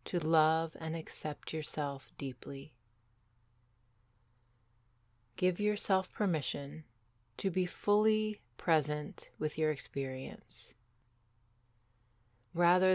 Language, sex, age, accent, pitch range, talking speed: English, female, 30-49, American, 115-165 Hz, 80 wpm